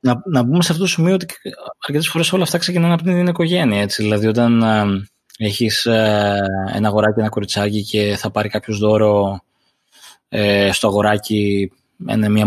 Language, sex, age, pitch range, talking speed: Greek, male, 20-39, 105-150 Hz, 170 wpm